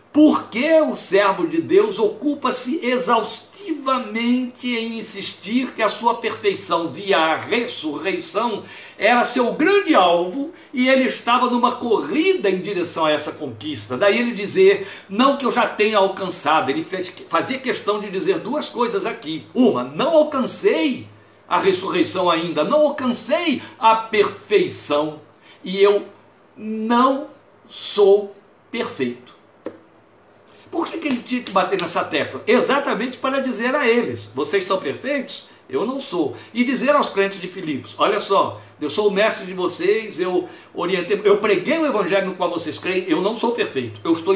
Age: 60-79